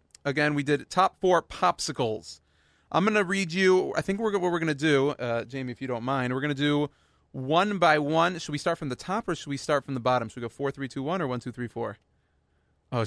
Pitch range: 115-150 Hz